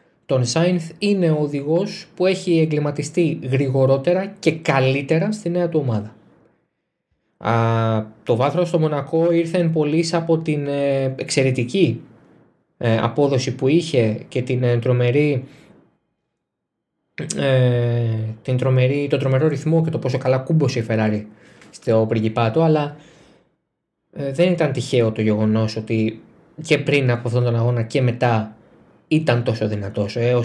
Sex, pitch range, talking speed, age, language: male, 115-155 Hz, 125 wpm, 20-39, Greek